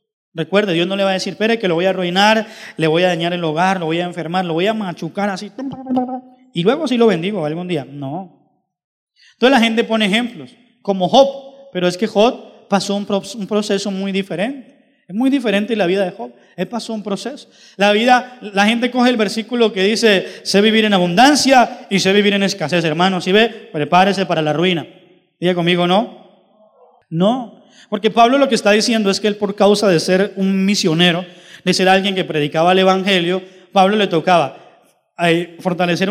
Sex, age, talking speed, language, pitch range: male, 20-39, 200 wpm, Spanish, 180-220 Hz